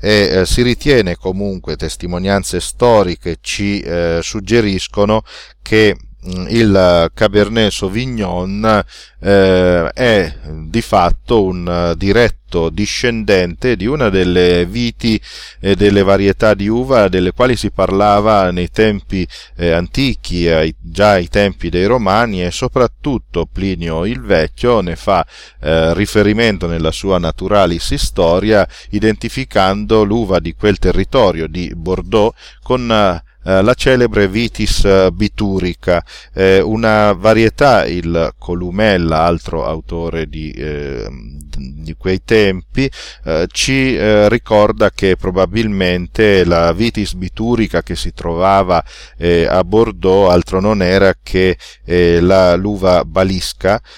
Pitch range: 85-110 Hz